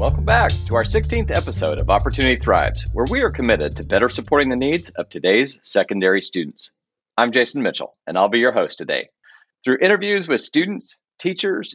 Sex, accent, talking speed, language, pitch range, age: male, American, 185 wpm, English, 115-180 Hz, 40-59